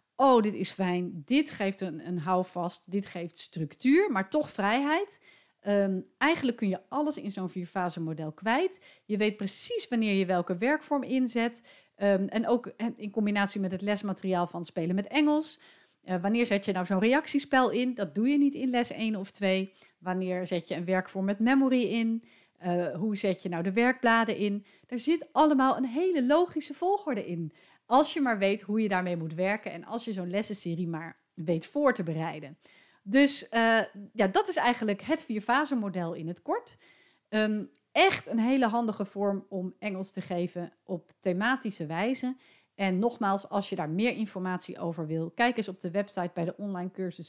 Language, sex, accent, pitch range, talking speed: Dutch, female, Dutch, 185-240 Hz, 185 wpm